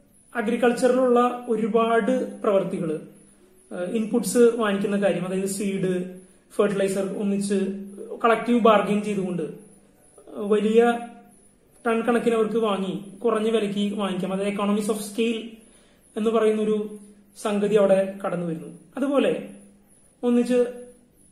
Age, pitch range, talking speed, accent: 30-49, 200-240 Hz, 95 wpm, native